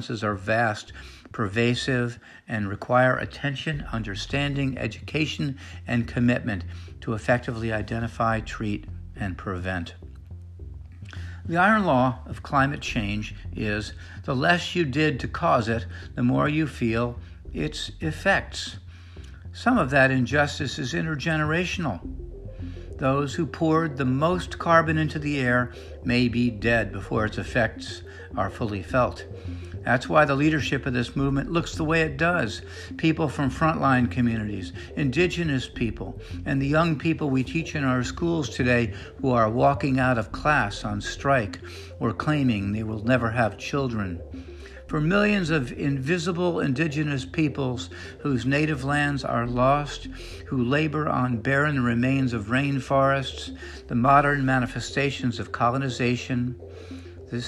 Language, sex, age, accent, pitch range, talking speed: English, male, 60-79, American, 95-140 Hz, 135 wpm